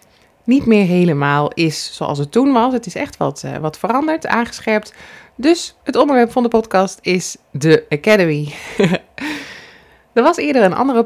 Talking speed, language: 165 wpm, Dutch